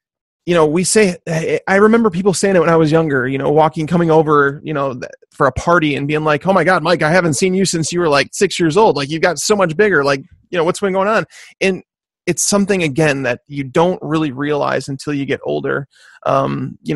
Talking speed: 245 wpm